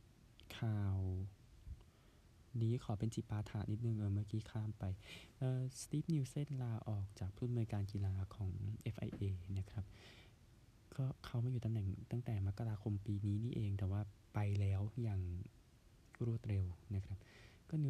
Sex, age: male, 20-39